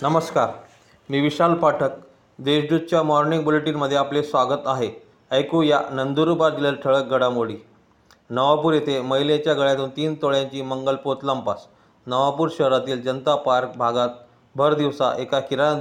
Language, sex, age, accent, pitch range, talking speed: Marathi, male, 30-49, native, 125-140 Hz, 125 wpm